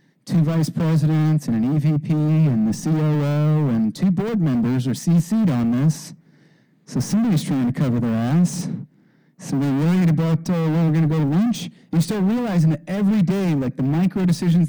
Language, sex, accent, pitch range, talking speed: English, male, American, 145-180 Hz, 185 wpm